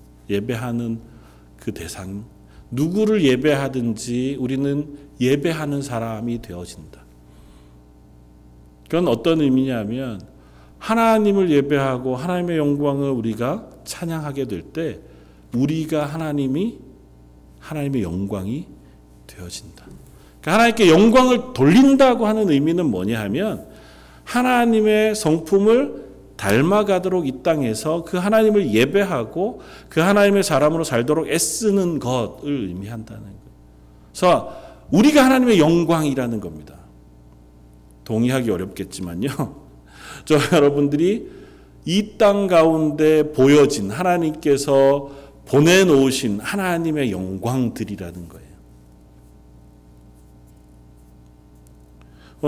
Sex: male